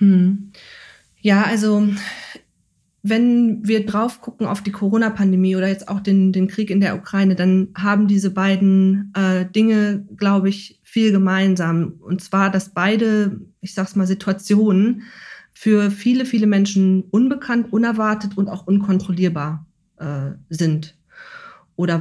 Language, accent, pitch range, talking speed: German, German, 185-210 Hz, 135 wpm